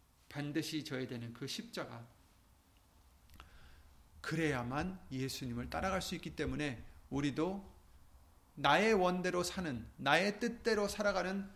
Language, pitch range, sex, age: Korean, 115-195 Hz, male, 30-49